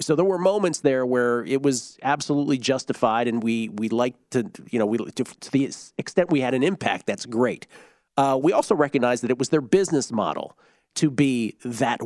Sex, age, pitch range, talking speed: male, 40-59, 120-155 Hz, 205 wpm